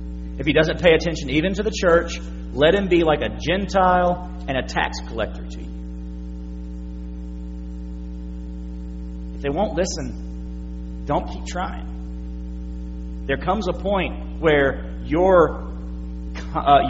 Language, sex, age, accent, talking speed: English, male, 40-59, American, 125 wpm